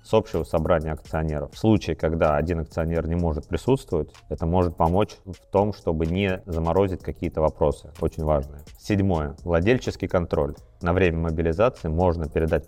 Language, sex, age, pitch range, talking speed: Russian, male, 30-49, 80-95 Hz, 150 wpm